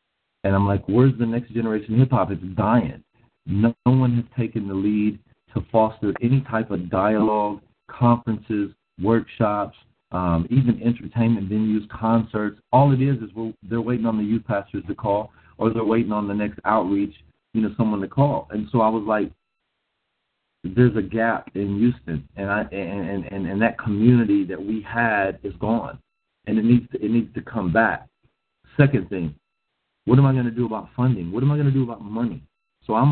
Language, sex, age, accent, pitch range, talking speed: English, male, 40-59, American, 105-130 Hz, 195 wpm